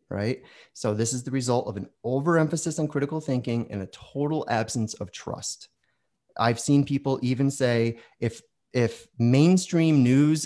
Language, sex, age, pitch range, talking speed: English, male, 30-49, 115-150 Hz, 155 wpm